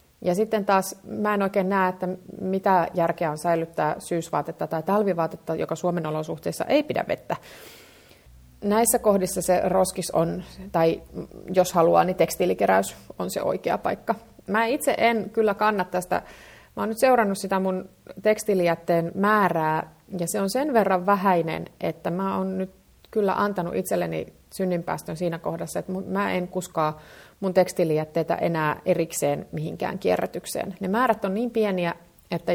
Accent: native